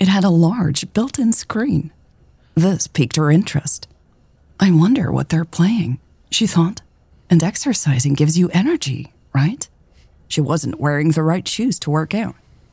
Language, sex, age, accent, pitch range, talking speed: English, female, 30-49, American, 150-195 Hz, 150 wpm